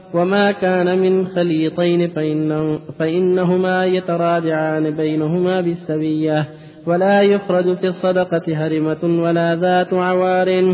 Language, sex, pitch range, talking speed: Arabic, male, 155-185 Hz, 95 wpm